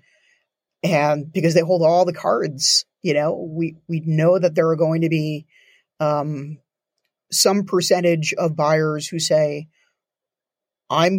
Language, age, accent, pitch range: English, 30-49, American, 155-185 Hz